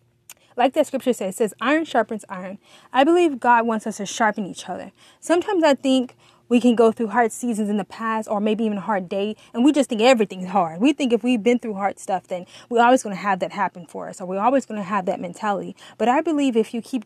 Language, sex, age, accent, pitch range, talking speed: English, female, 20-39, American, 200-255 Hz, 260 wpm